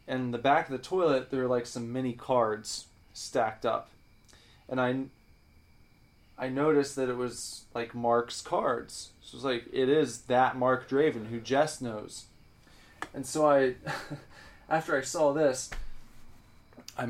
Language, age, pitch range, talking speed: English, 20-39, 120-155 Hz, 155 wpm